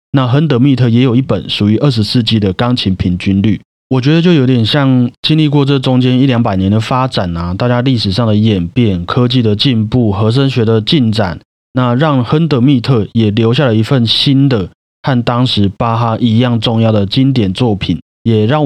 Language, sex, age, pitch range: Chinese, male, 30-49, 105-135 Hz